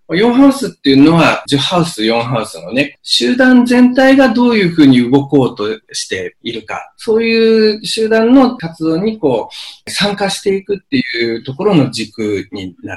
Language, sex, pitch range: Japanese, male, 140-220 Hz